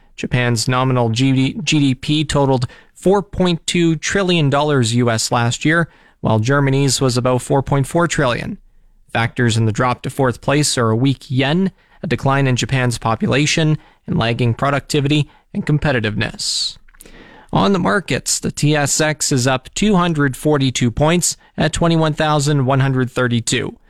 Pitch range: 125-160 Hz